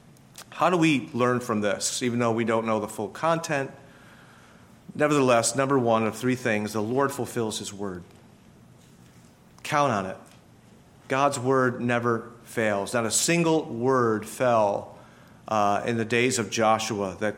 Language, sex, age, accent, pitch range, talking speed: English, male, 40-59, American, 110-140 Hz, 150 wpm